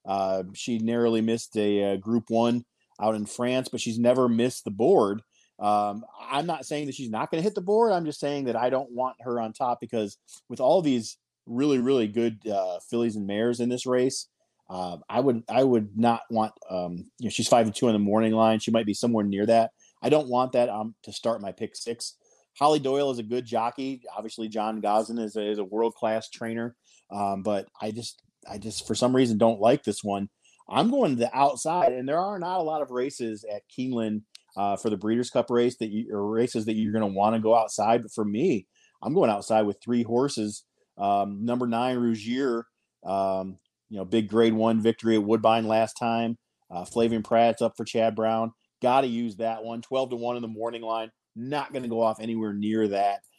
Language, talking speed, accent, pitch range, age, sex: English, 225 wpm, American, 110-125 Hz, 30-49, male